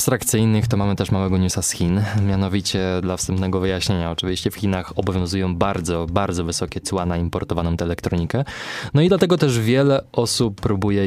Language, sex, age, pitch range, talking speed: Polish, male, 20-39, 95-120 Hz, 170 wpm